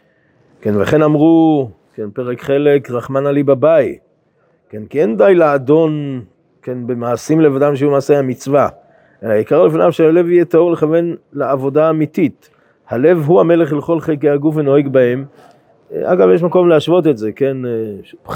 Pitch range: 125-160 Hz